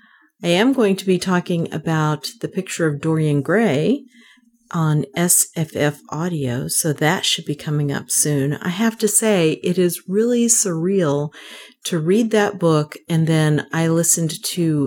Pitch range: 150-195 Hz